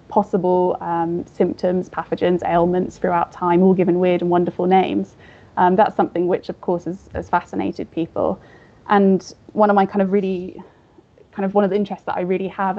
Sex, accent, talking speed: female, British, 190 wpm